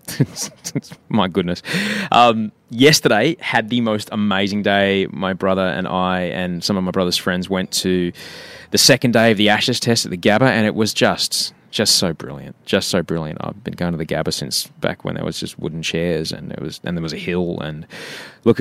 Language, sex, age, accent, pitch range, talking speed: English, male, 20-39, Australian, 90-115 Hz, 210 wpm